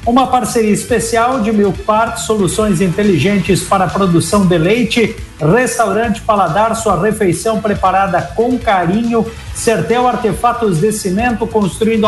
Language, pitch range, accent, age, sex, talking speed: Portuguese, 185-225 Hz, Brazilian, 60-79, male, 125 wpm